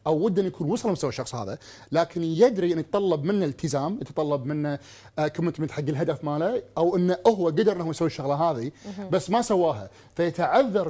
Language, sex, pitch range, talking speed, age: Arabic, male, 145-190 Hz, 170 wpm, 30-49